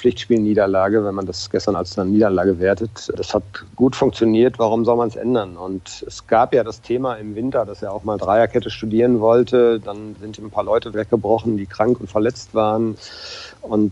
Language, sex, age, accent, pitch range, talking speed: German, male, 40-59, German, 100-115 Hz, 195 wpm